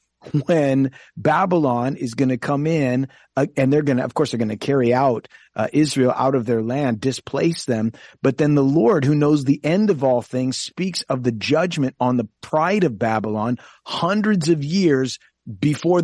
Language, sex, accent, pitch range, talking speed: English, male, American, 115-145 Hz, 190 wpm